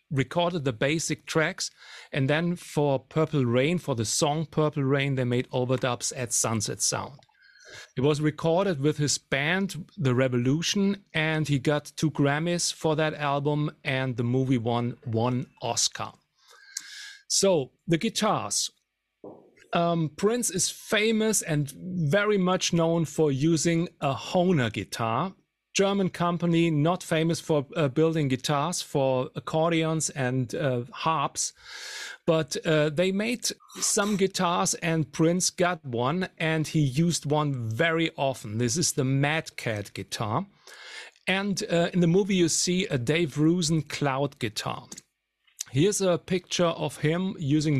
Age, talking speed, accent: 40-59, 140 wpm, German